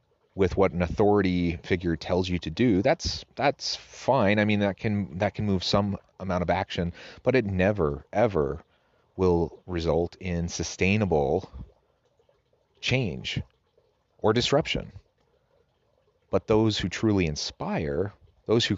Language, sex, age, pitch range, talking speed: English, male, 30-49, 85-105 Hz, 130 wpm